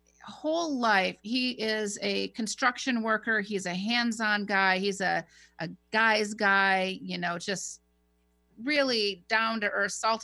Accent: American